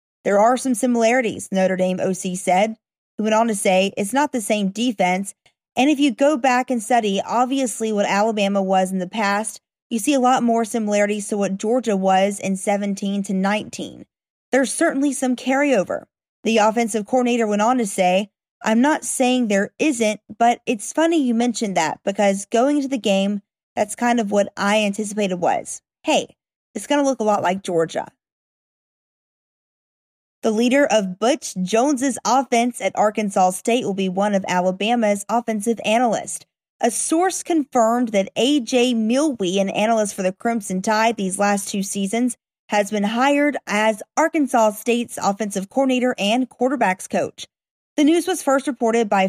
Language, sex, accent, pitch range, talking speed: English, female, American, 200-250 Hz, 170 wpm